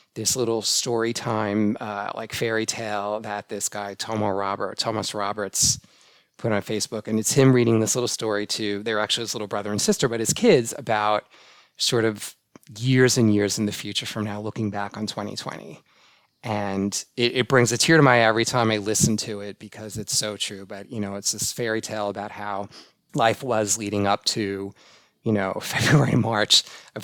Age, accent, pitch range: 30-49, American, 105-120 Hz